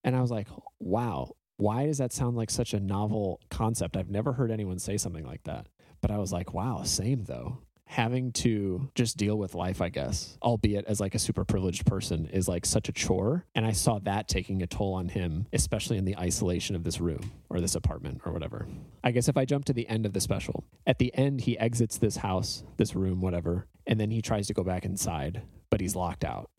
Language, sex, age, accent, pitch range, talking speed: English, male, 30-49, American, 95-120 Hz, 230 wpm